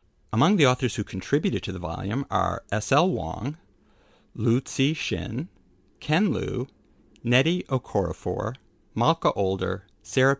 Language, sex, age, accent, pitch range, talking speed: English, male, 50-69, American, 95-120 Hz, 115 wpm